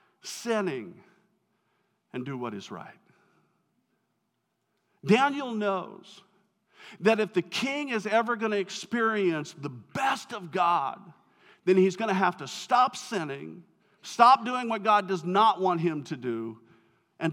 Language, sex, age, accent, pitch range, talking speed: English, male, 50-69, American, 160-210 Hz, 140 wpm